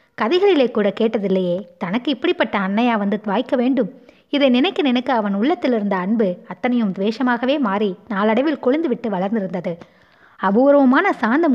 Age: 20-39